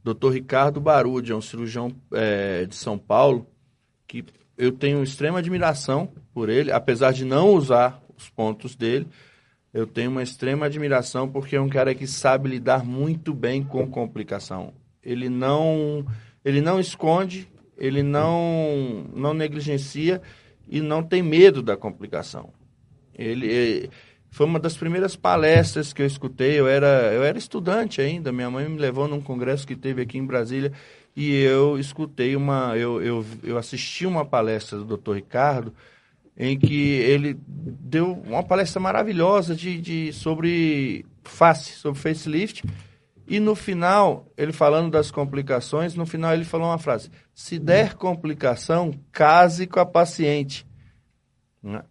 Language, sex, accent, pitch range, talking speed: Portuguese, male, Brazilian, 125-160 Hz, 150 wpm